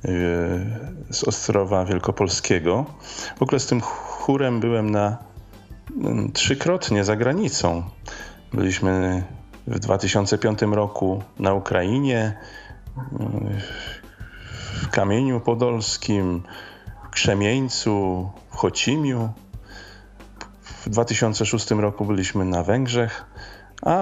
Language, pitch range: Polish, 95-115 Hz